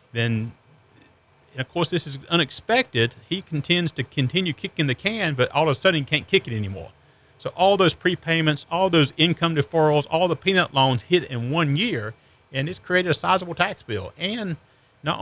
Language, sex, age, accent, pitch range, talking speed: English, male, 40-59, American, 125-165 Hz, 195 wpm